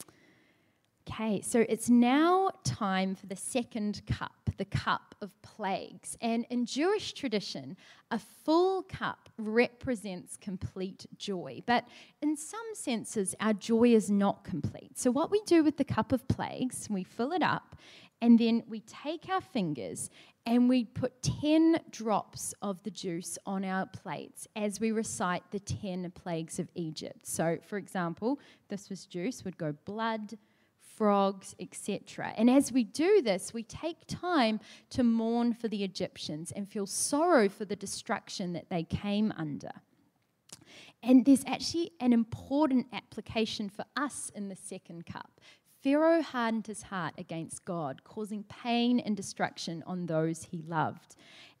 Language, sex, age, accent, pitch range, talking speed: English, female, 20-39, Australian, 190-255 Hz, 150 wpm